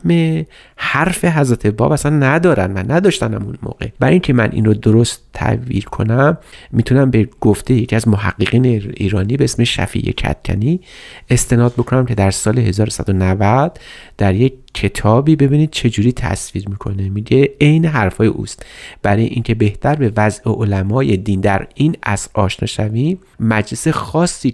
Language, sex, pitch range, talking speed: Persian, male, 105-140 Hz, 140 wpm